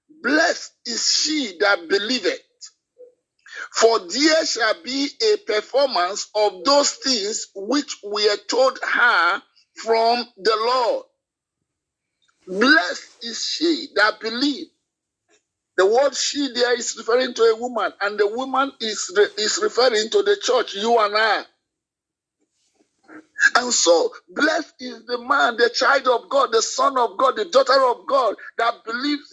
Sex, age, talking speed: male, 50-69, 140 wpm